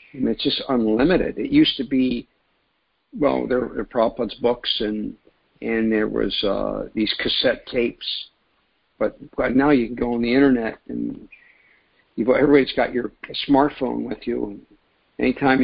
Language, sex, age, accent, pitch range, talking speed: English, male, 50-69, American, 115-135 Hz, 150 wpm